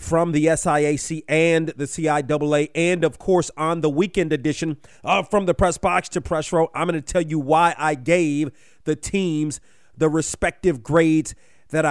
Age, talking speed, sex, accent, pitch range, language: 30-49, 175 wpm, male, American, 145-175 Hz, English